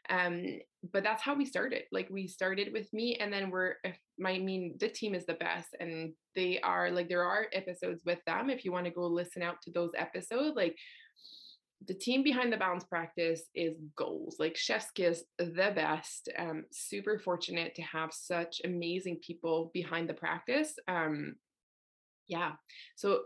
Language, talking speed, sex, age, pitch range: English, 180 wpm, female, 20-39, 165-200 Hz